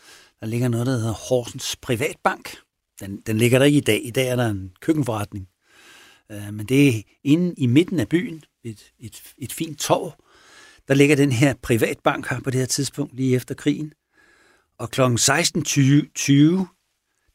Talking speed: 175 wpm